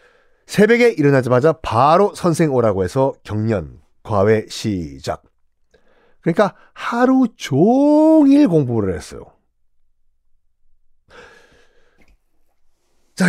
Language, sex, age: Korean, male, 40-59